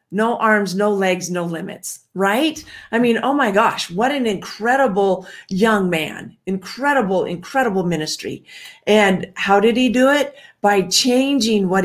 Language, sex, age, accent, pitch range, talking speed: English, female, 40-59, American, 185-225 Hz, 145 wpm